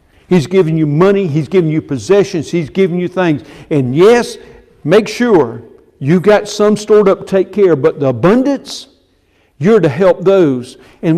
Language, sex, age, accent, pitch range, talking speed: English, male, 60-79, American, 145-195 Hz, 170 wpm